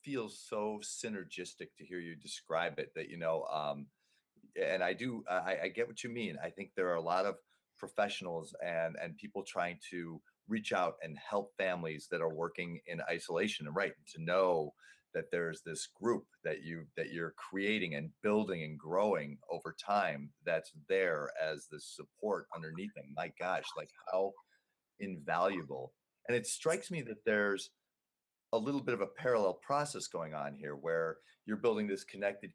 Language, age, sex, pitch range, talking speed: English, 40-59, male, 85-115 Hz, 175 wpm